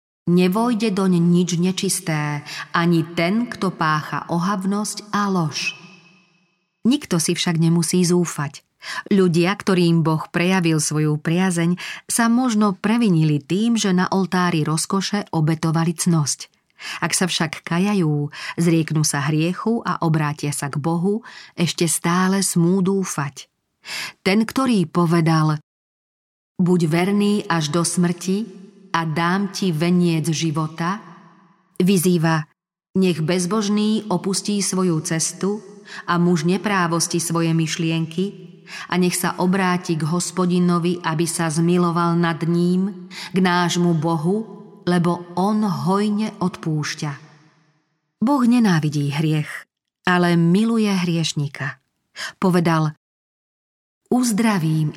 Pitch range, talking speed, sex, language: 165-190 Hz, 105 wpm, female, Slovak